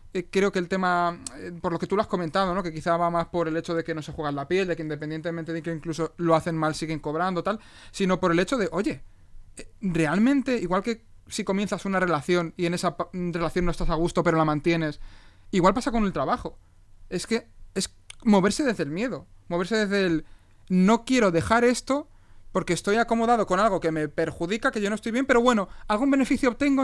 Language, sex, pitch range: Spanish, male, 160-205 Hz